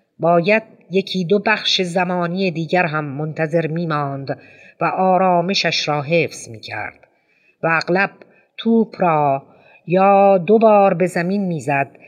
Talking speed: 120 wpm